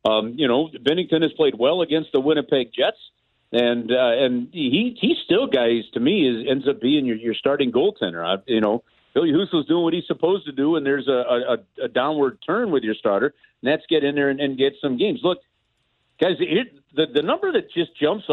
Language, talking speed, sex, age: English, 225 wpm, male, 50-69